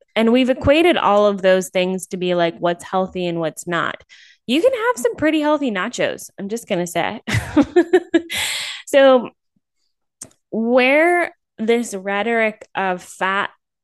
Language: English